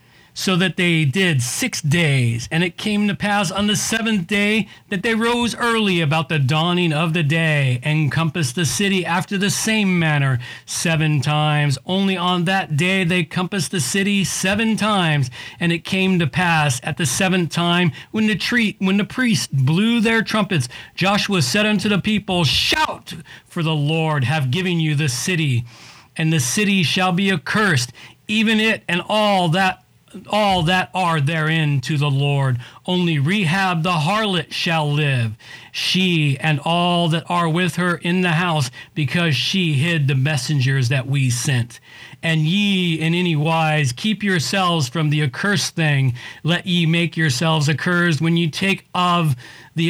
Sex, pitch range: male, 150-195 Hz